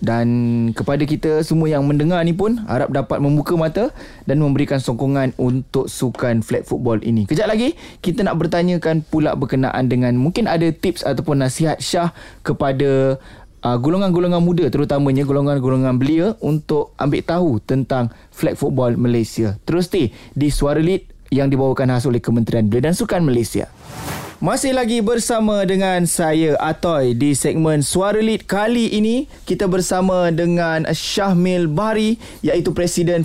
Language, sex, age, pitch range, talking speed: Malay, male, 20-39, 135-175 Hz, 145 wpm